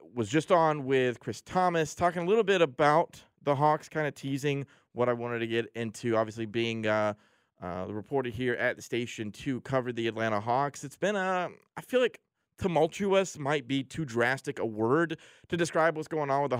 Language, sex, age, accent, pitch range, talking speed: English, male, 30-49, American, 120-165 Hz, 205 wpm